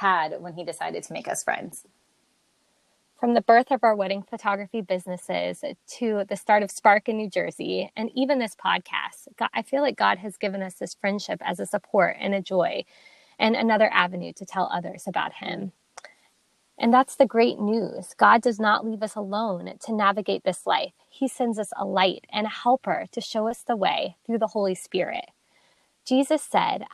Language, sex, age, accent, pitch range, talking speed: English, female, 20-39, American, 190-235 Hz, 190 wpm